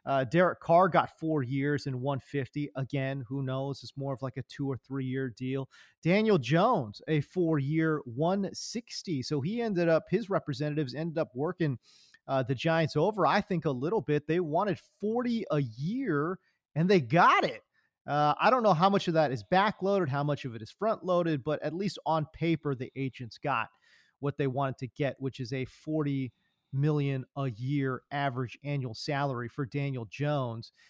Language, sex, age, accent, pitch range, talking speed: English, male, 30-49, American, 135-180 Hz, 190 wpm